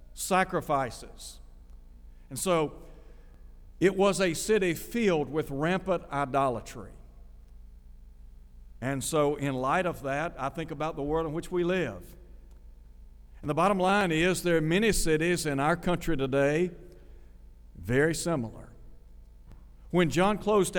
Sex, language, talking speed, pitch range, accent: male, English, 125 wpm, 115-170 Hz, American